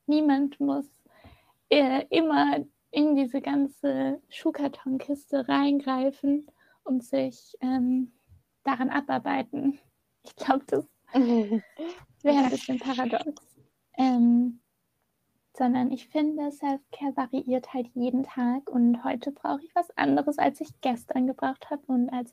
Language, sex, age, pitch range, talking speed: German, female, 20-39, 255-285 Hz, 115 wpm